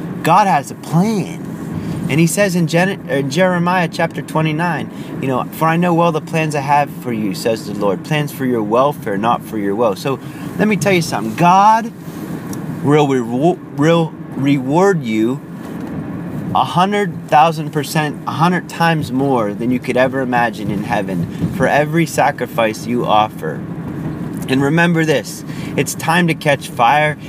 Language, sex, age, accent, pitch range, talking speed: English, male, 30-49, American, 130-165 Hz, 165 wpm